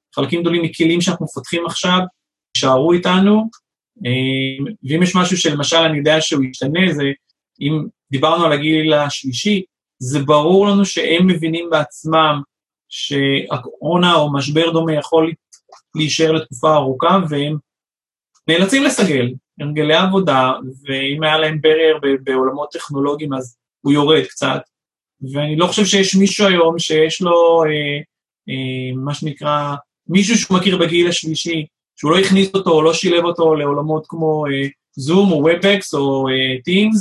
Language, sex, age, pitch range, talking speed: Hebrew, male, 30-49, 145-180 Hz, 140 wpm